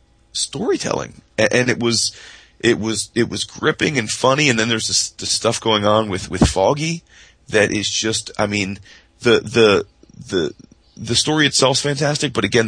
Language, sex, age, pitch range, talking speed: English, male, 30-49, 100-120 Hz, 175 wpm